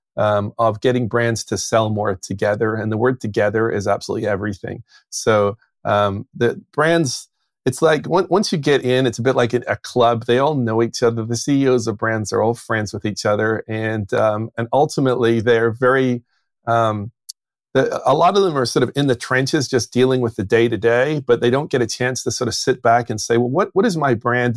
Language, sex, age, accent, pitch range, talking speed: English, male, 40-59, American, 115-135 Hz, 225 wpm